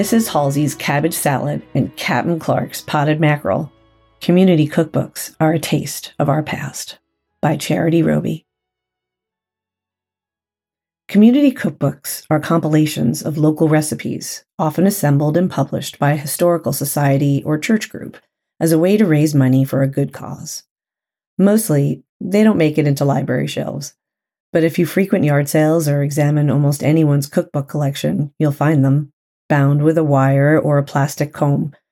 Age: 40-59